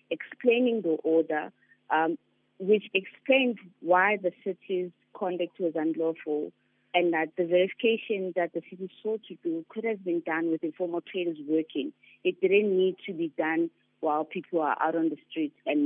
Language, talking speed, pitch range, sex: English, 165 wpm, 160-220 Hz, female